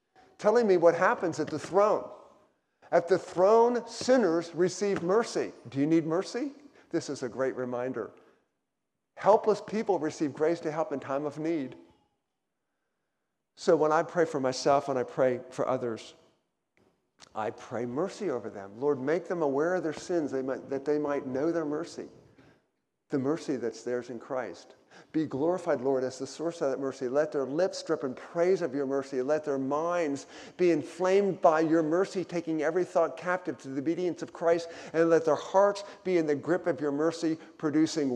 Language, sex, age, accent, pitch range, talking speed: English, male, 50-69, American, 135-175 Hz, 180 wpm